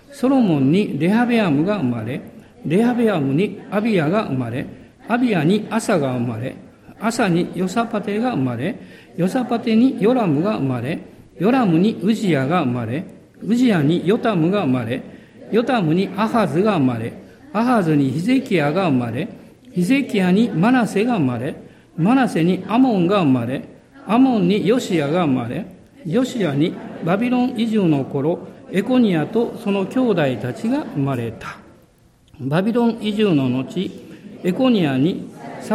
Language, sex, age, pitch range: Japanese, male, 50-69, 155-230 Hz